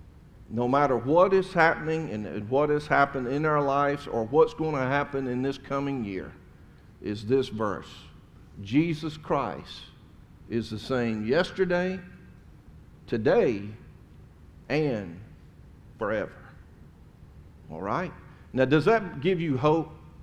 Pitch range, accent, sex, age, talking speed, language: 105-150 Hz, American, male, 50-69, 120 wpm, English